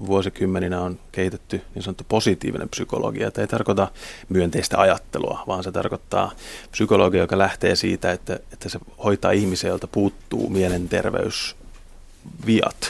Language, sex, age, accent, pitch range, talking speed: Finnish, male, 30-49, native, 90-100 Hz, 120 wpm